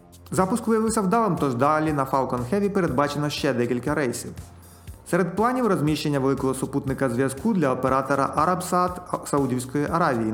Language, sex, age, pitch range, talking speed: Ukrainian, male, 30-49, 125-170 Hz, 135 wpm